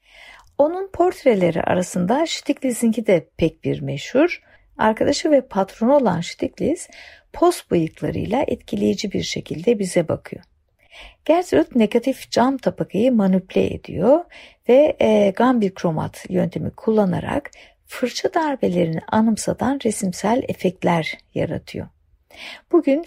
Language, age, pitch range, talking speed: Turkish, 60-79, 185-295 Hz, 100 wpm